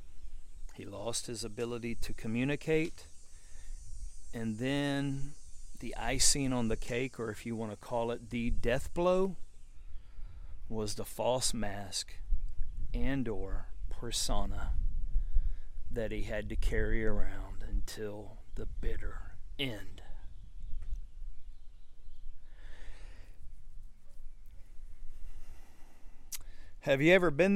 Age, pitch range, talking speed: 40-59, 75-115 Hz, 95 wpm